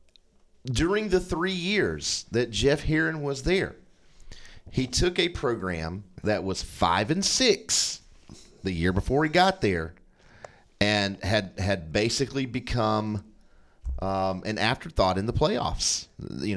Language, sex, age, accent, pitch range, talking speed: English, male, 40-59, American, 90-120 Hz, 130 wpm